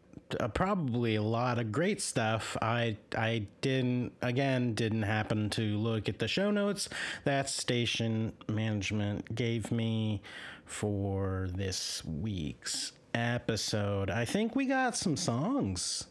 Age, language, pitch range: 30-49, English, 105-130 Hz